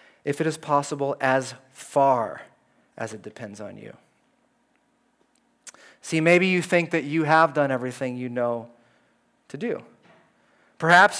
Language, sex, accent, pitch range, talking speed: English, male, American, 135-195 Hz, 135 wpm